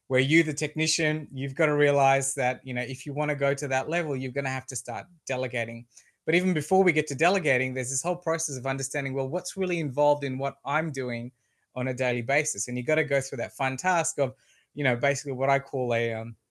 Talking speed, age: 250 wpm, 20-39